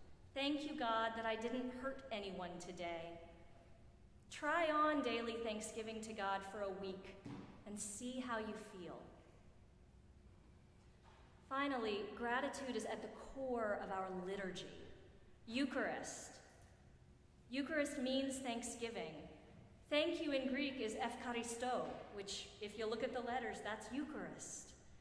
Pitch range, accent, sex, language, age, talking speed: 210-260 Hz, American, female, English, 30-49, 120 wpm